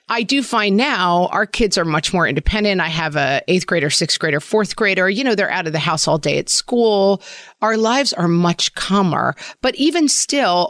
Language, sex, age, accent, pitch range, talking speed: English, female, 40-59, American, 165-220 Hz, 215 wpm